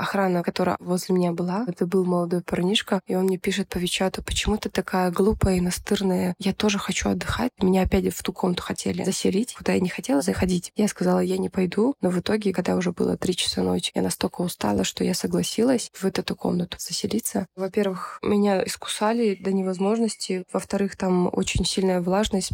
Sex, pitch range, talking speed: female, 180-205 Hz, 190 wpm